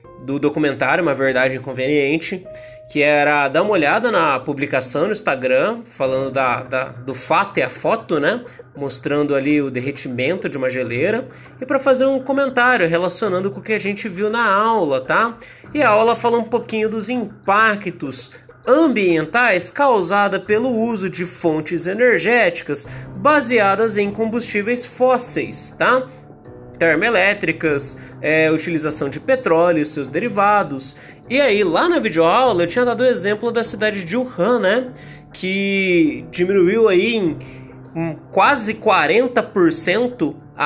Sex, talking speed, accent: male, 135 wpm, Brazilian